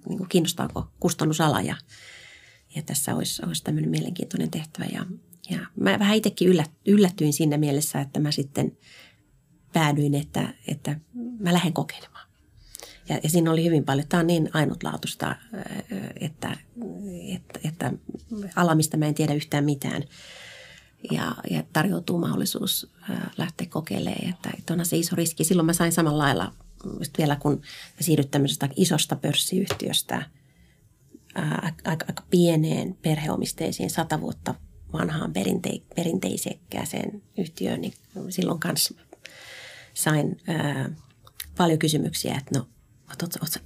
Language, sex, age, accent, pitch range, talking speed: Finnish, female, 30-49, native, 145-180 Hz, 130 wpm